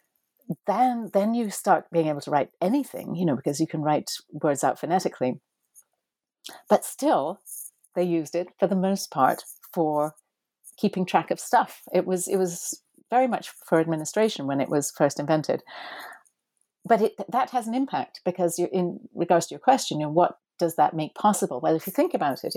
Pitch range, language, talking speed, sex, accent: 150-195 Hz, English, 185 wpm, female, British